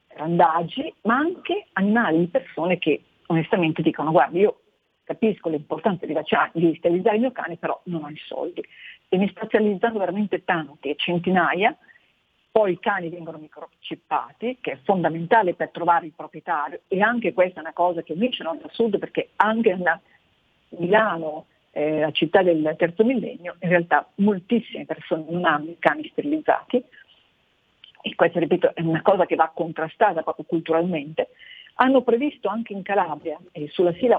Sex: female